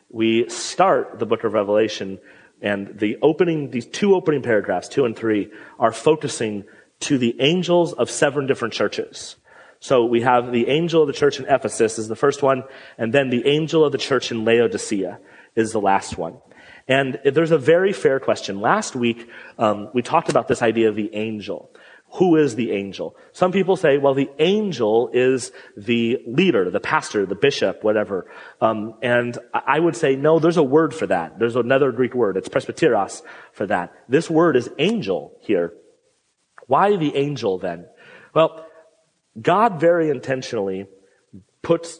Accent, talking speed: American, 170 wpm